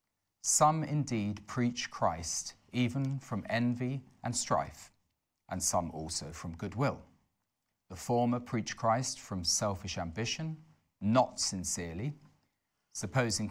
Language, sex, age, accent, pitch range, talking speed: English, male, 40-59, British, 95-125 Hz, 105 wpm